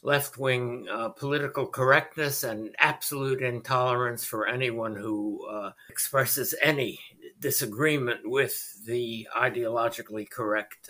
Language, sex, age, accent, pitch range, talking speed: English, male, 60-79, American, 120-140 Hz, 100 wpm